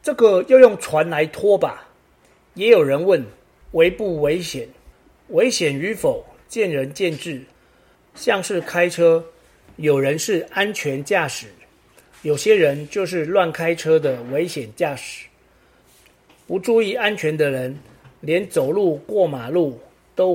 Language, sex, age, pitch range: Chinese, male, 40-59, 130-185 Hz